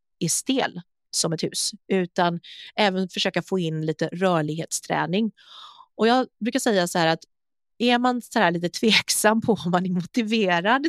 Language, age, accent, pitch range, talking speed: Swedish, 30-49, native, 165-215 Hz, 165 wpm